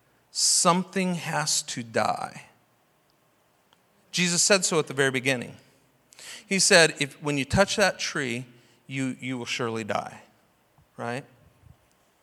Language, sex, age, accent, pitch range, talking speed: English, male, 40-59, American, 150-235 Hz, 125 wpm